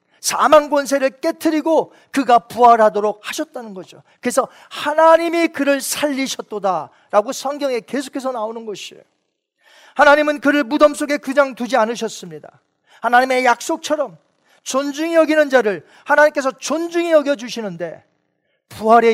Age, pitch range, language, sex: 40-59, 210-280 Hz, Korean, male